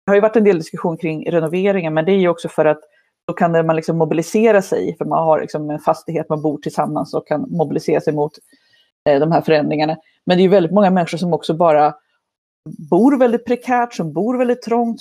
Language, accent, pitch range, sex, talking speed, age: Swedish, native, 160-210 Hz, female, 225 wpm, 30-49